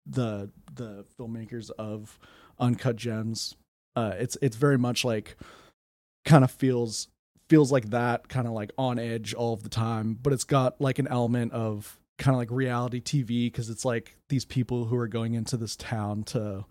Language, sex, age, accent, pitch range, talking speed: English, male, 30-49, American, 110-125 Hz, 185 wpm